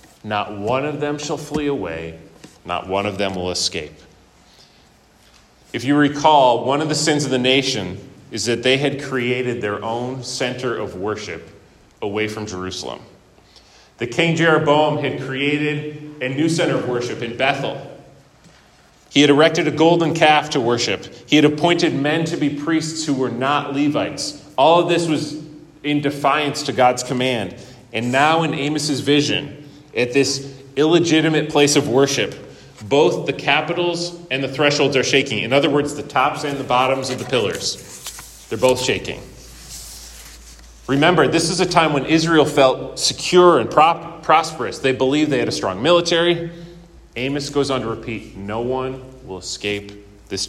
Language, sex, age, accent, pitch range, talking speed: English, male, 30-49, American, 120-150 Hz, 165 wpm